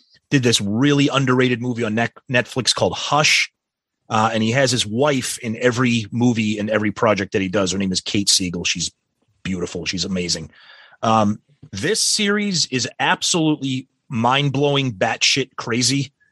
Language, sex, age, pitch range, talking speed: English, male, 30-49, 110-140 Hz, 155 wpm